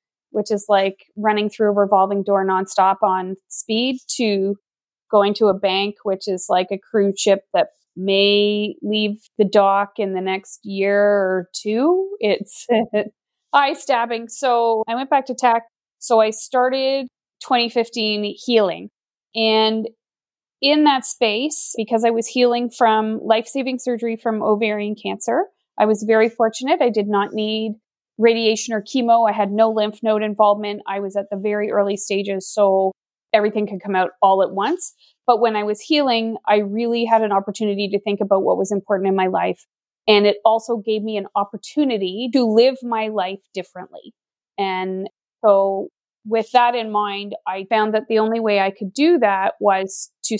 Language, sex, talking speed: English, female, 170 wpm